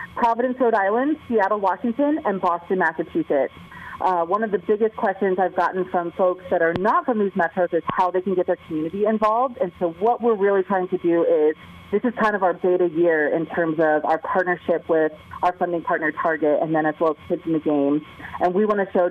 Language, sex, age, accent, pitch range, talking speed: English, female, 30-49, American, 160-195 Hz, 225 wpm